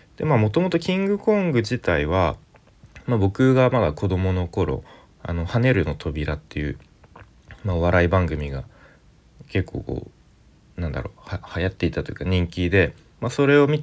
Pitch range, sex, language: 85-115 Hz, male, Japanese